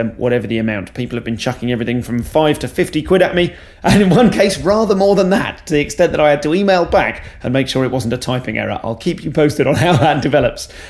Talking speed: 265 wpm